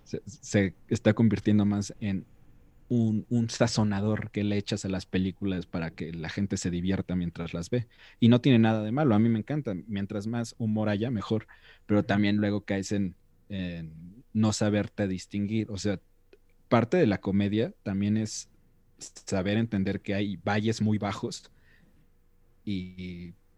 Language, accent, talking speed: Spanish, Mexican, 165 wpm